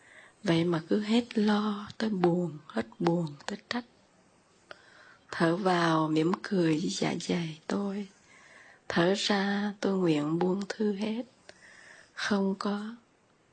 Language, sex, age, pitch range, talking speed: Vietnamese, female, 20-39, 170-210 Hz, 120 wpm